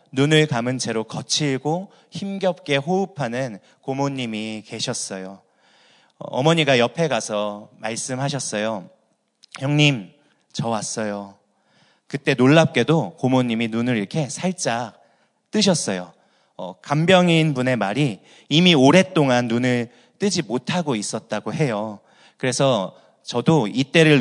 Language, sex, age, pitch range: Korean, male, 30-49, 115-155 Hz